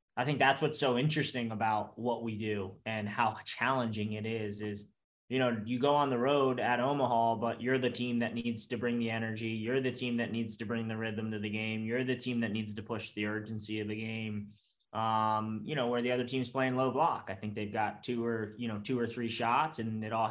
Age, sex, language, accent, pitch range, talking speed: 20-39, male, English, American, 110-125 Hz, 250 wpm